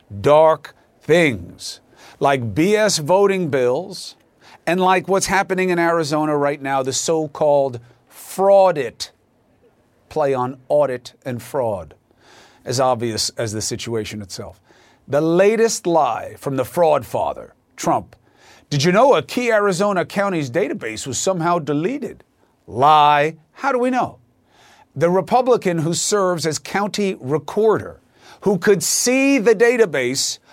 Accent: American